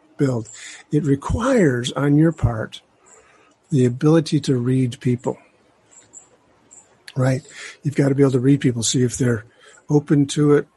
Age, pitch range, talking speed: 50-69, 125-145 Hz, 145 wpm